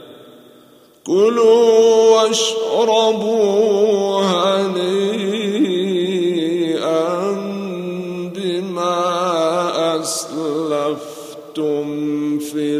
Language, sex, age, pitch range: Arabic, male, 50-69, 160-220 Hz